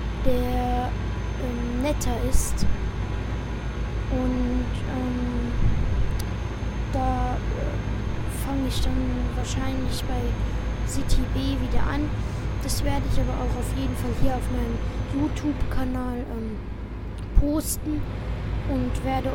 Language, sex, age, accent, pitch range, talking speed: German, female, 20-39, German, 100-125 Hz, 100 wpm